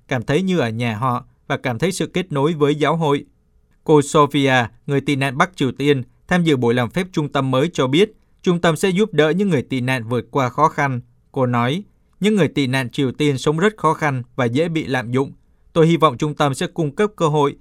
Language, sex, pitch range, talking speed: Vietnamese, male, 130-165 Hz, 250 wpm